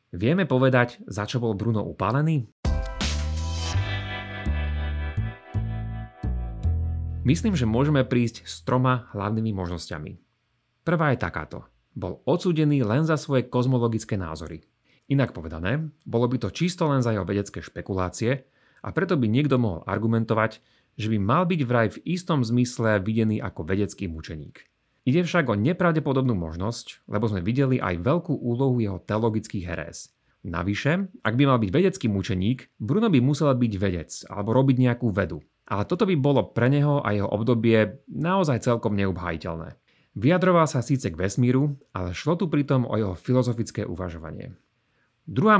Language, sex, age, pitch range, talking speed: Slovak, male, 30-49, 95-135 Hz, 145 wpm